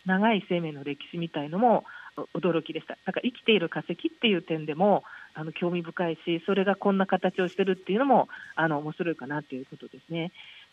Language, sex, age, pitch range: Japanese, female, 40-59, 160-205 Hz